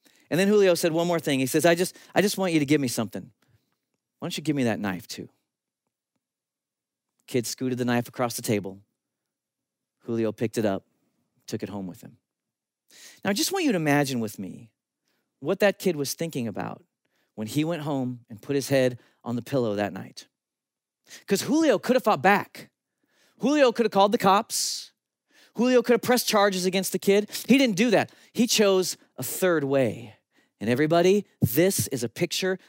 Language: English